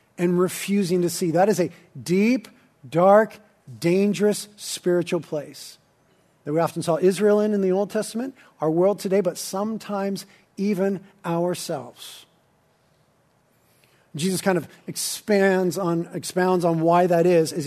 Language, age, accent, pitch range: English, 40-59, American, 170-200 Hz